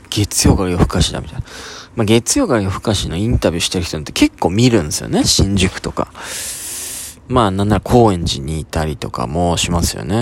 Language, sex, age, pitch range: Japanese, male, 20-39, 85-115 Hz